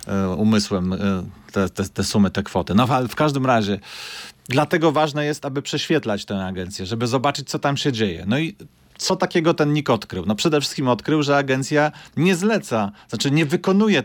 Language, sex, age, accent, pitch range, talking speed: Polish, male, 30-49, native, 110-150 Hz, 185 wpm